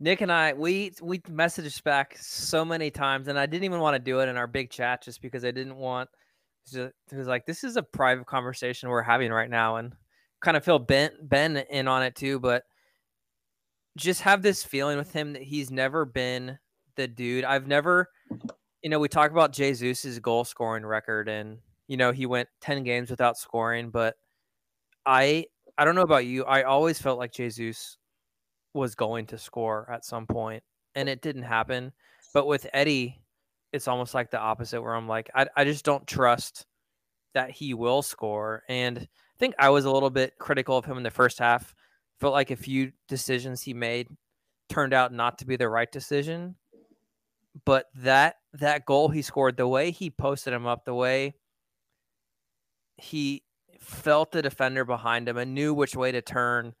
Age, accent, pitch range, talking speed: 20-39, American, 120-145 Hz, 190 wpm